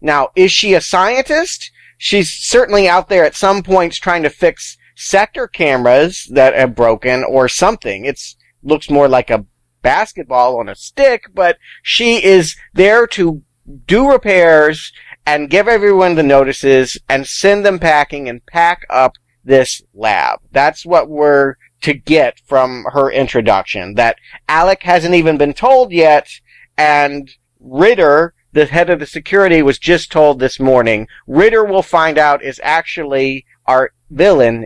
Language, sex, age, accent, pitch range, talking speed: English, male, 40-59, American, 135-195 Hz, 150 wpm